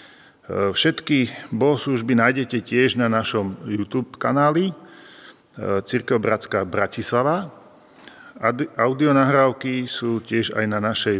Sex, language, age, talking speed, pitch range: male, Slovak, 40-59, 90 wpm, 105-125 Hz